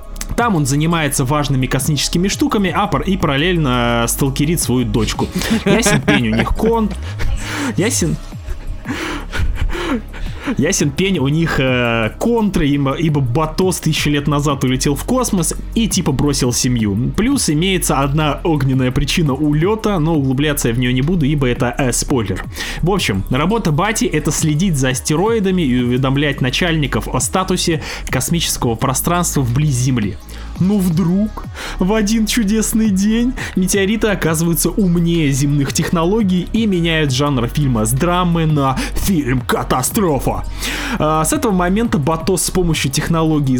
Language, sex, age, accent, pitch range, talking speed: Russian, male, 20-39, native, 135-190 Hz, 135 wpm